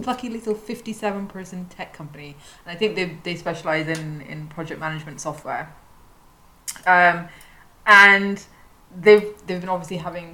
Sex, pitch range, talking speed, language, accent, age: female, 155-185 Hz, 135 wpm, English, British, 20-39